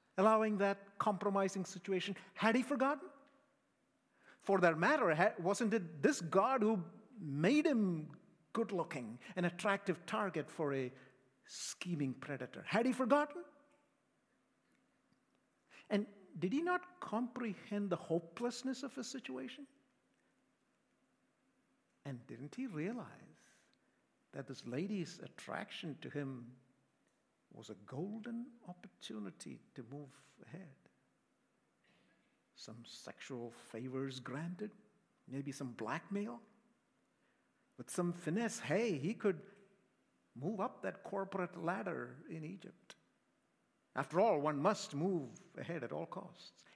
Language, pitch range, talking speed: English, 155-230 Hz, 110 wpm